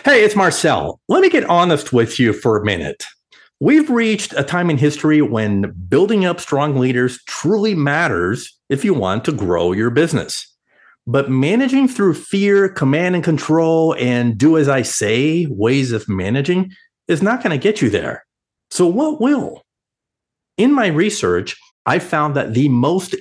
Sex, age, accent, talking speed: male, 50-69, American, 170 wpm